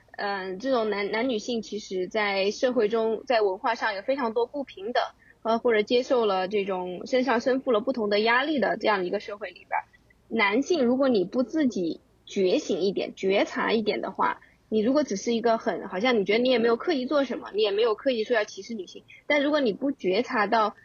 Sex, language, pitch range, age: female, Chinese, 210-265 Hz, 20-39